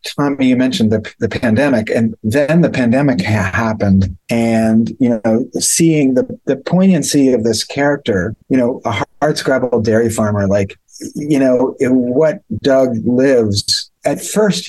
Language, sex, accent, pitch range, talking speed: English, male, American, 110-135 Hz, 155 wpm